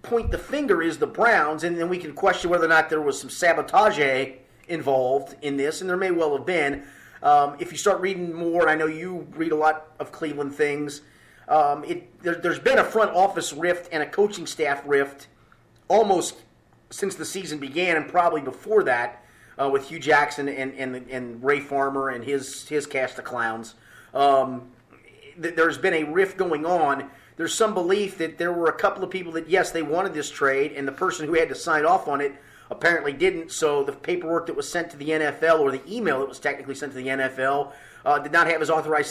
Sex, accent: male, American